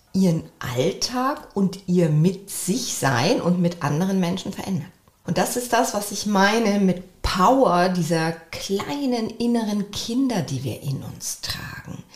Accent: German